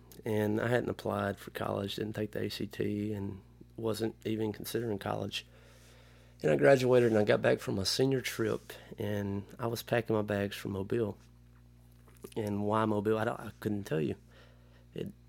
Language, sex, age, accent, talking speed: English, male, 30-49, American, 175 wpm